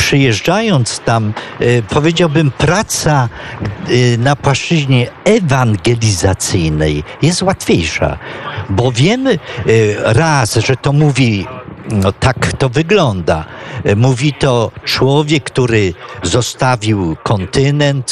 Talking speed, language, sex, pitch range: 85 wpm, Polish, male, 105-140 Hz